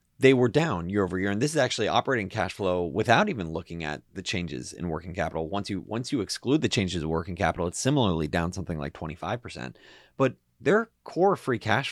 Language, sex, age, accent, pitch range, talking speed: English, male, 30-49, American, 90-135 Hz, 215 wpm